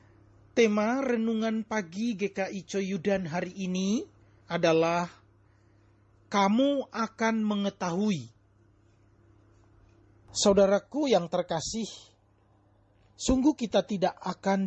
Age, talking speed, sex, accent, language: 40-59, 75 wpm, male, native, Indonesian